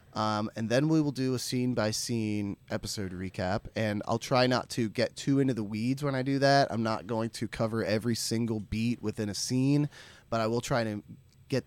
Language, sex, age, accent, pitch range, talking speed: English, male, 20-39, American, 105-135 Hz, 220 wpm